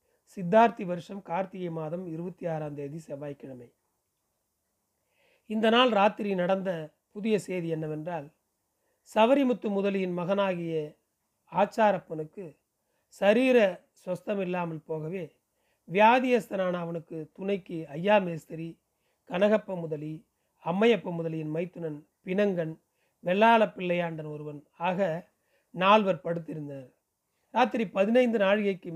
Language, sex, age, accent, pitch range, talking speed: Tamil, male, 40-59, native, 165-205 Hz, 85 wpm